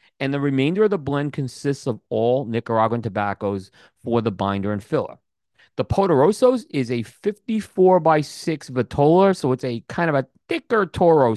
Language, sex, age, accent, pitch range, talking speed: English, male, 40-59, American, 125-175 Hz, 170 wpm